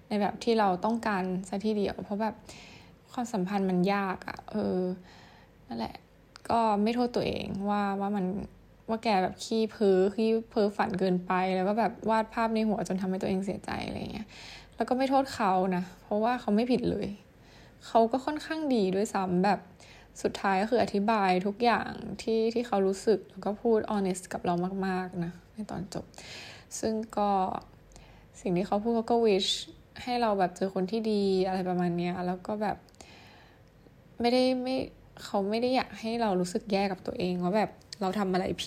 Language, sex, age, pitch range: Thai, female, 10-29, 190-225 Hz